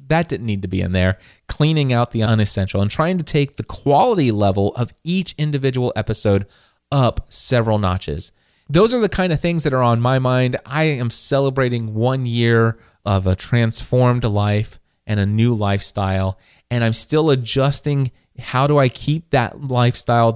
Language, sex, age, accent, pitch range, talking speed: English, male, 20-39, American, 105-130 Hz, 175 wpm